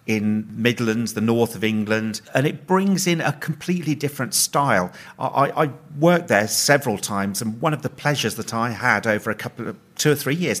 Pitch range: 120-155 Hz